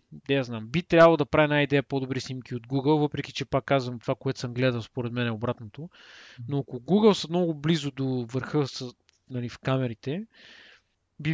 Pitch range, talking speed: 130-170 Hz, 180 wpm